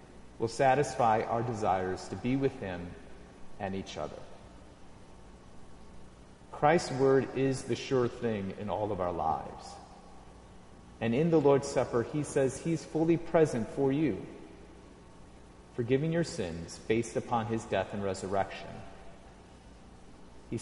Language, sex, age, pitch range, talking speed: English, male, 40-59, 85-125 Hz, 130 wpm